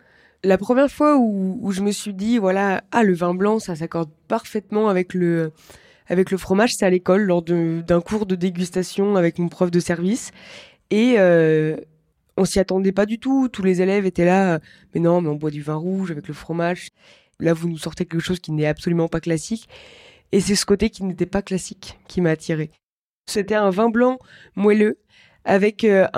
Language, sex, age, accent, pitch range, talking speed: French, female, 20-39, French, 175-215 Hz, 205 wpm